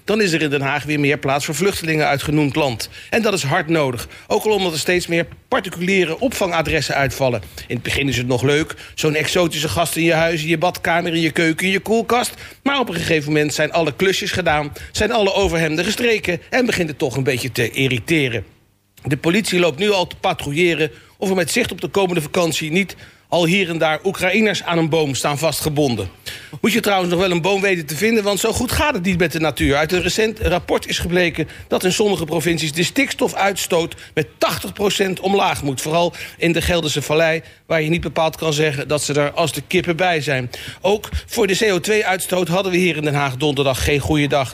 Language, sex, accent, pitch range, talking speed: Dutch, male, Dutch, 145-185 Hz, 220 wpm